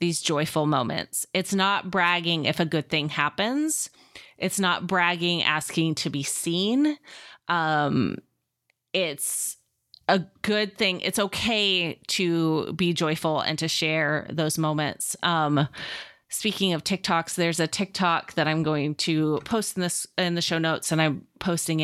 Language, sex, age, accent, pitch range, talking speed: English, female, 20-39, American, 155-190 Hz, 150 wpm